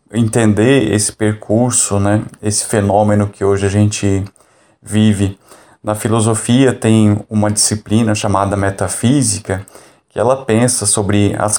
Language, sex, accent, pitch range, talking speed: Portuguese, male, Brazilian, 100-115 Hz, 120 wpm